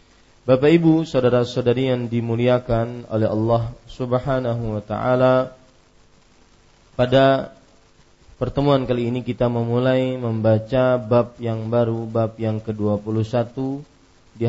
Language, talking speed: Malay, 100 wpm